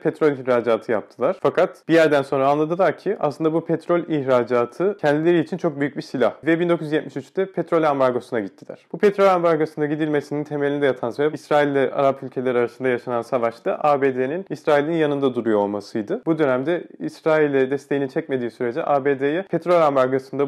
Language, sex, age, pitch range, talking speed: Turkish, male, 30-49, 130-165 Hz, 150 wpm